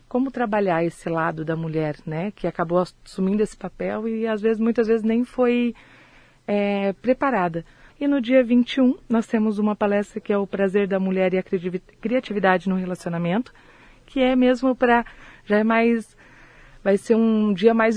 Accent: Brazilian